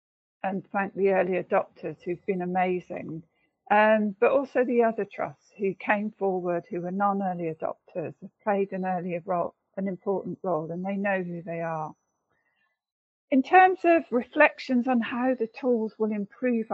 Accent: British